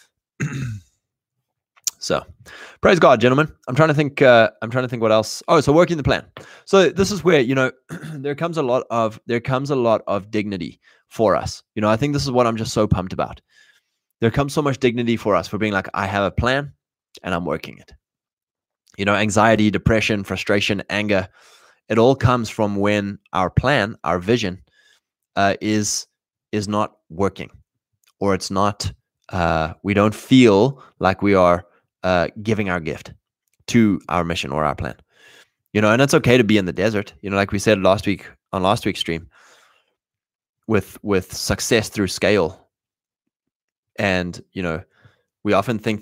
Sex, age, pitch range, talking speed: male, 20-39, 95-125 Hz, 185 wpm